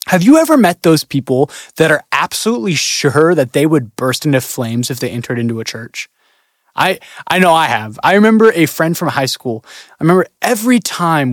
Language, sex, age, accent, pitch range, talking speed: English, male, 20-39, American, 130-195 Hz, 200 wpm